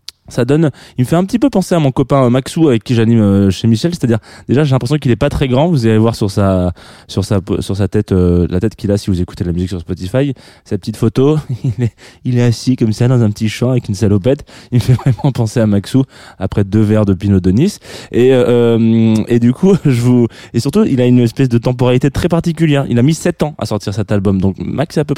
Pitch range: 100-130 Hz